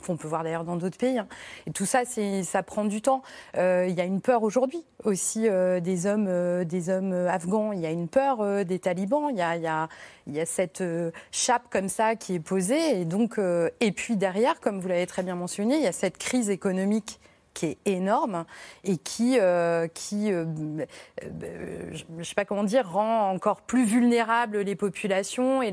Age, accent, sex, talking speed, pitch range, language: 30-49, French, female, 210 wpm, 185-225 Hz, French